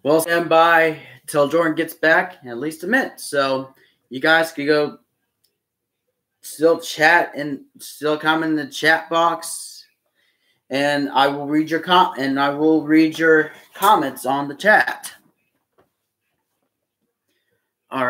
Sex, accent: male, American